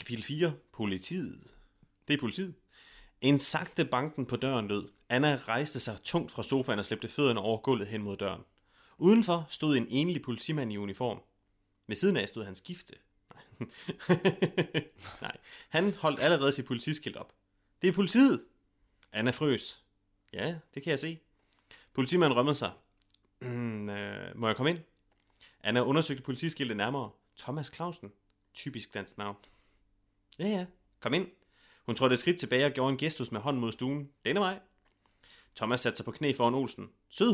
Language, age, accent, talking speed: Danish, 30-49, native, 160 wpm